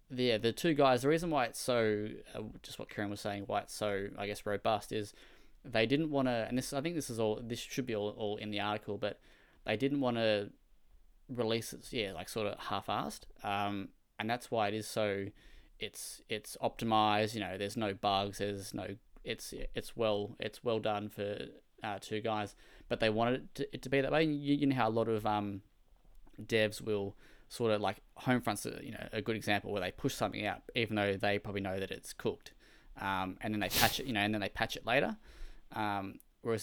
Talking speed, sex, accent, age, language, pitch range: 225 wpm, male, Australian, 10-29, English, 100-115 Hz